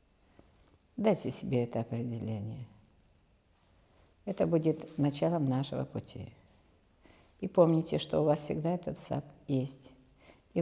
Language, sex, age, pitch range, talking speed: Russian, female, 50-69, 105-155 Hz, 105 wpm